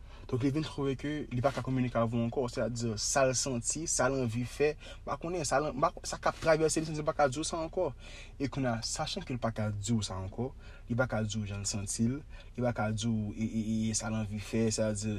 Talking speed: 120 wpm